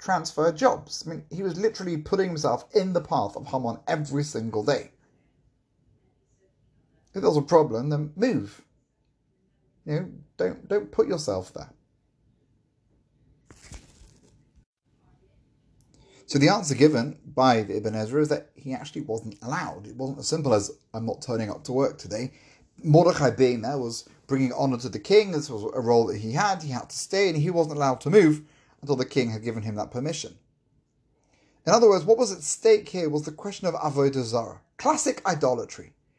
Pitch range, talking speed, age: 130-170 Hz, 175 wpm, 30-49